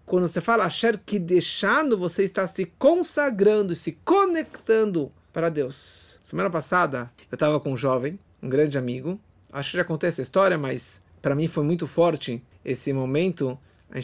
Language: Portuguese